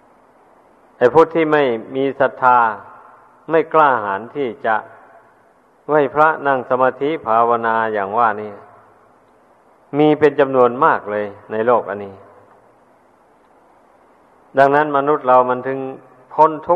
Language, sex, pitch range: Thai, male, 115-145 Hz